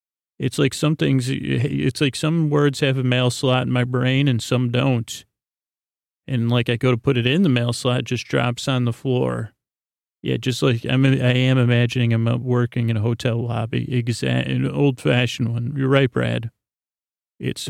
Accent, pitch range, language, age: American, 120-135 Hz, English, 40-59